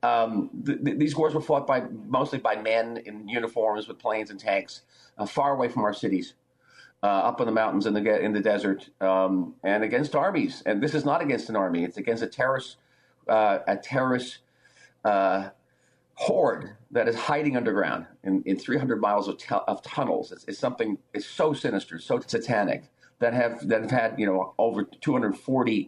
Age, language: 40-59, English